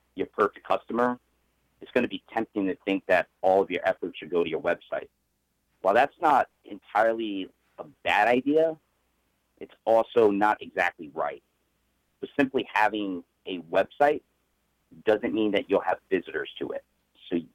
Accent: American